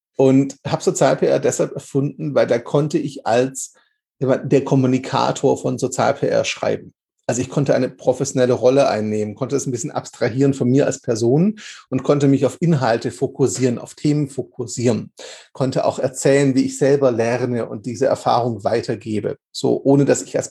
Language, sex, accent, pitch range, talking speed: German, male, German, 130-165 Hz, 165 wpm